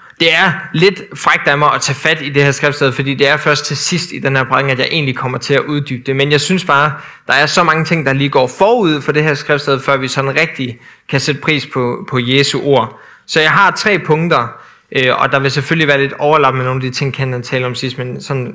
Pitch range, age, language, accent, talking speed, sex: 130-155 Hz, 20-39, Danish, native, 265 wpm, male